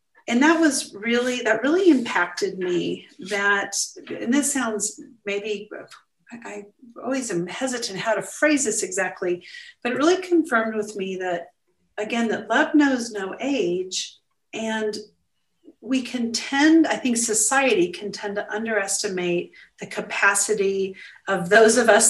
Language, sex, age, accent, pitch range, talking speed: English, female, 40-59, American, 190-235 Hz, 140 wpm